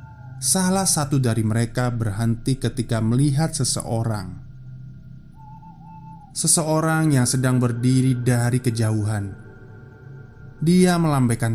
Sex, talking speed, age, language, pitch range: male, 85 wpm, 20-39, Indonesian, 115-140 Hz